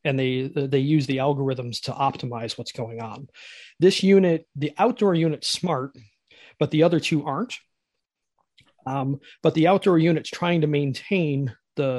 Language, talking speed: English, 155 wpm